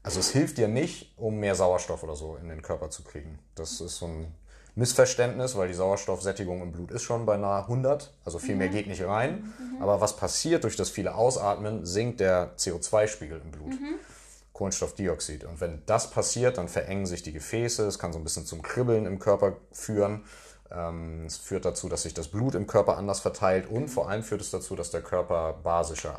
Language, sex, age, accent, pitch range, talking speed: German, male, 30-49, German, 80-105 Hz, 200 wpm